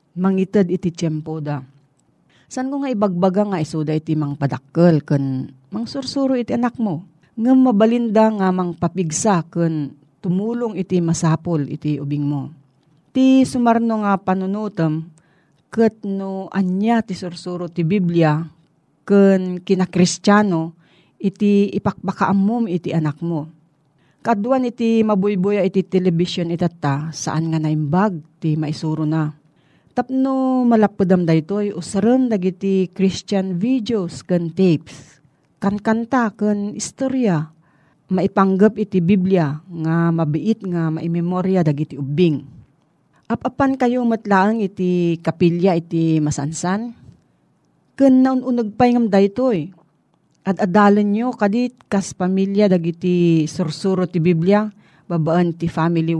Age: 40-59